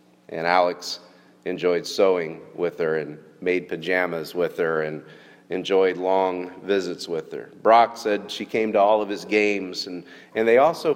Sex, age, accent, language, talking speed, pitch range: male, 40-59, American, English, 165 wpm, 85-120 Hz